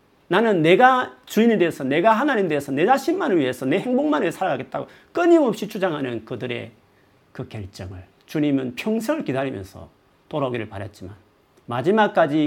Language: Korean